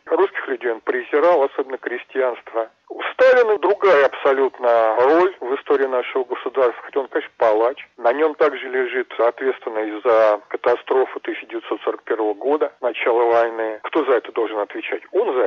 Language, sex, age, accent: Russian, male, 40-59, native